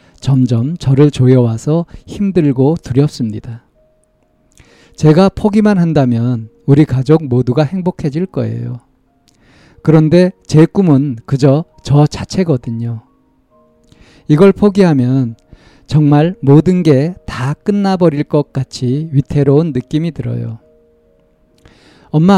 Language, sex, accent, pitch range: Korean, male, native, 120-160 Hz